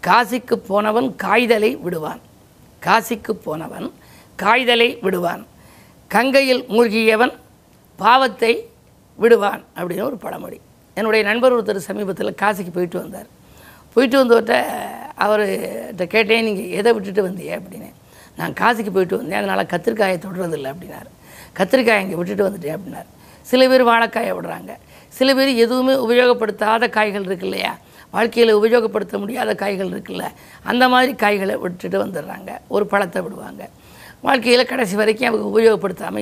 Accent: native